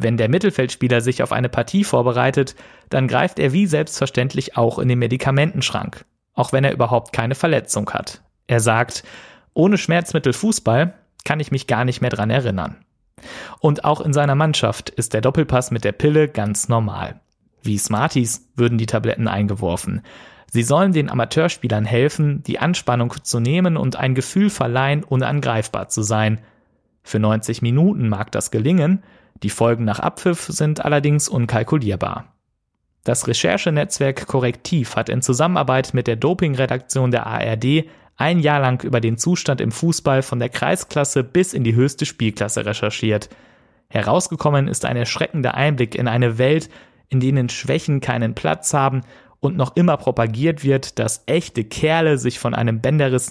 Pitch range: 115-150 Hz